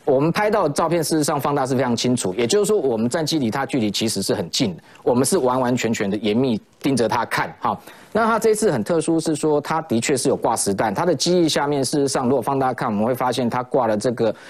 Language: Chinese